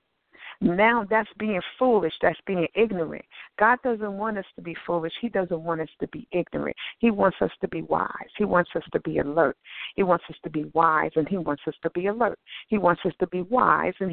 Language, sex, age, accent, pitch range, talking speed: English, female, 60-79, American, 165-205 Hz, 225 wpm